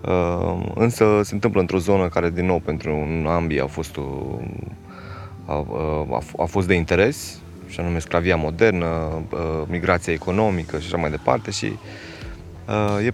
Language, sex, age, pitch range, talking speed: Romanian, male, 20-39, 80-95 Hz, 160 wpm